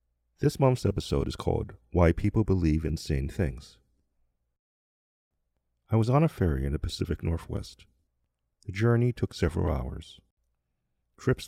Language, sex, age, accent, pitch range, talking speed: English, male, 40-59, American, 65-95 Hz, 130 wpm